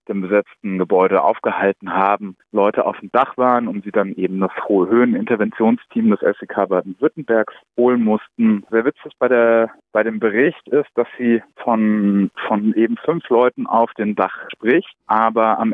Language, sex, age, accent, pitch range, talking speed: German, male, 30-49, German, 105-120 Hz, 170 wpm